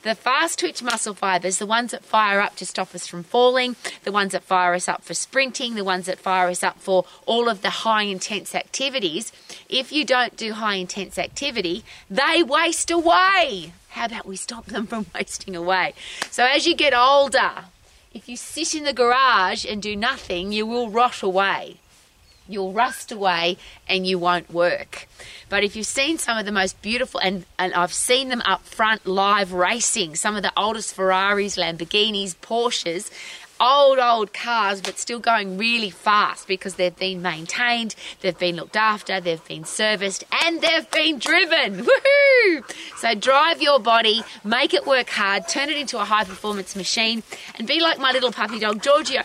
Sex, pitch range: female, 190-250 Hz